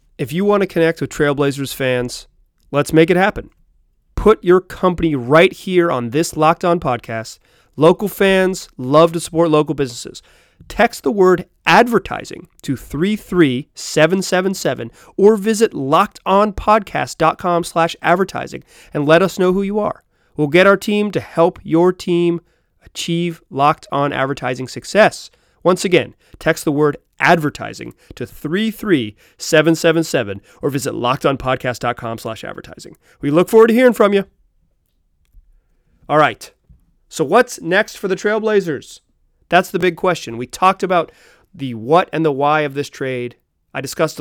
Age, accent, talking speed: 30-49, American, 145 wpm